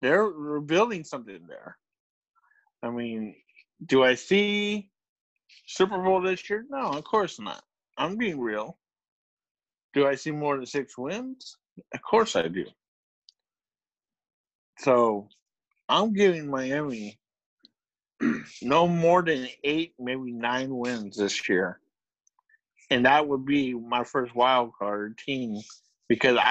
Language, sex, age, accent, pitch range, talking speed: English, male, 50-69, American, 125-180 Hz, 120 wpm